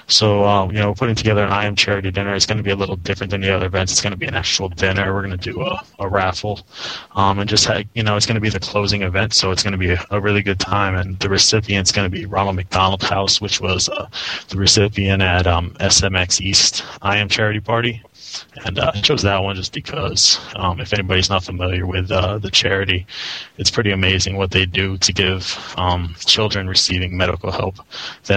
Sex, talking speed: male, 235 wpm